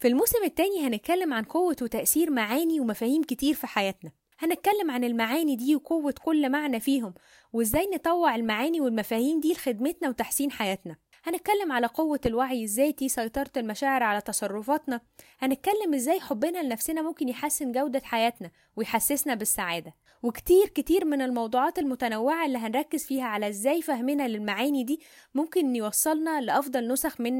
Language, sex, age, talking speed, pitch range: Arabic, female, 10-29, 140 wpm, 240-315 Hz